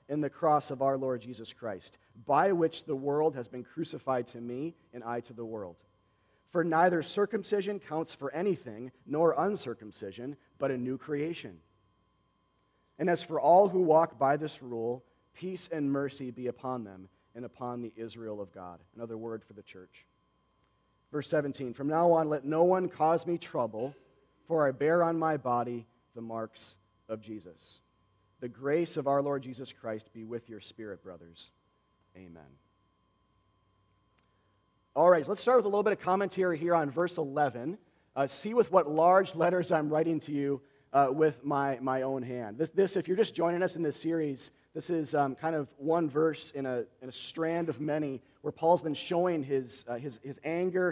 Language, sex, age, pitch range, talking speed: English, male, 40-59, 115-160 Hz, 185 wpm